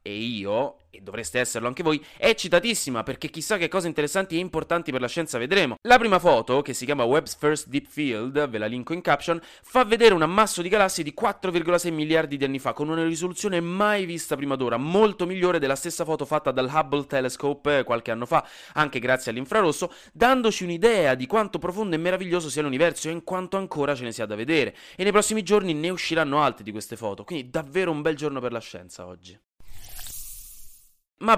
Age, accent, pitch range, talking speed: 30-49, native, 120-180 Hz, 205 wpm